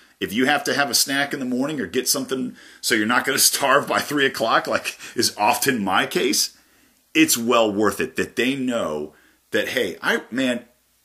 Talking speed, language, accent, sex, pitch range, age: 205 wpm, English, American, male, 100-130 Hz, 40-59